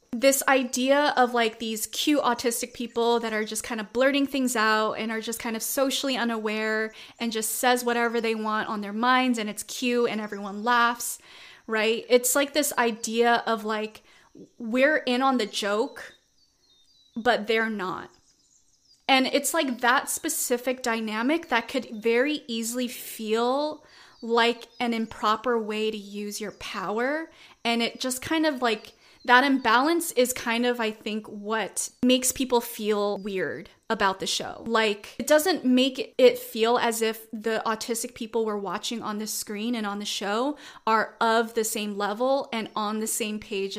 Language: English